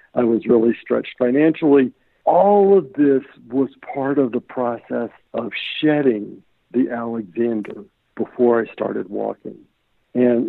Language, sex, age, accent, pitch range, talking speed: English, male, 60-79, American, 110-130 Hz, 125 wpm